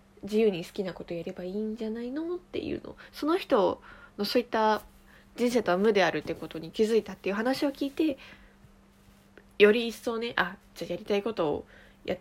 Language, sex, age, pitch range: Japanese, female, 20-39, 170-225 Hz